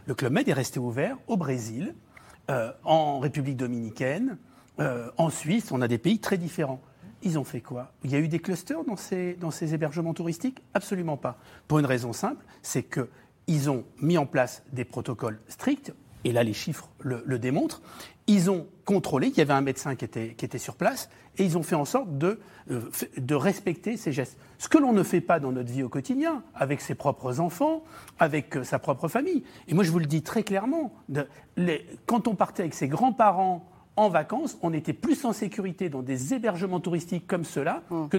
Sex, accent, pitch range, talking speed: male, French, 135-195 Hz, 205 wpm